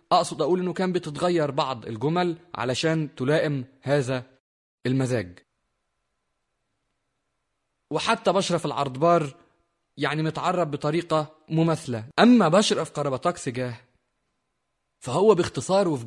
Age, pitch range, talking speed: 30-49, 130-170 Hz, 100 wpm